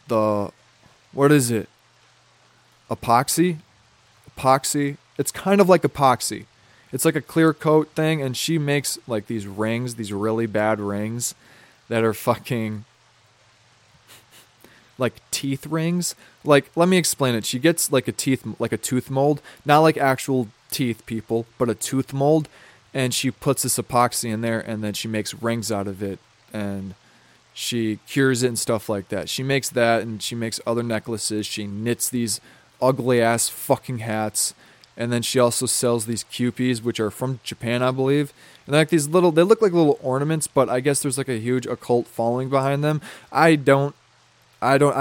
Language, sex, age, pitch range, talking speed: English, male, 20-39, 115-140 Hz, 175 wpm